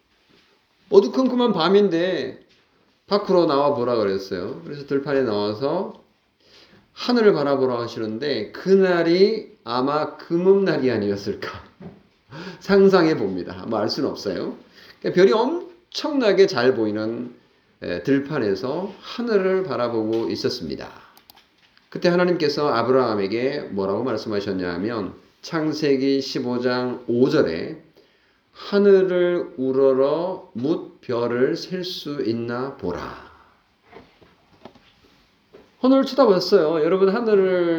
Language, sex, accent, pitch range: Korean, male, native, 115-190 Hz